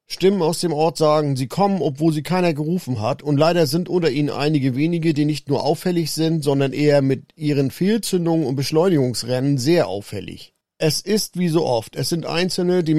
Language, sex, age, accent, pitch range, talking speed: German, male, 40-59, German, 140-175 Hz, 195 wpm